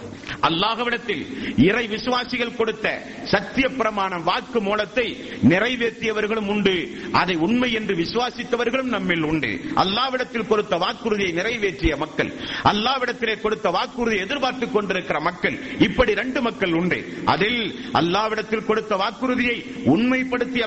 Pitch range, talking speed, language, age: 195-245 Hz, 105 wpm, Tamil, 50-69